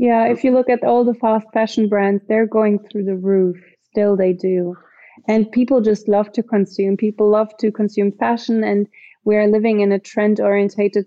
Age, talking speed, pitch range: 20-39, 195 wpm, 200-225 Hz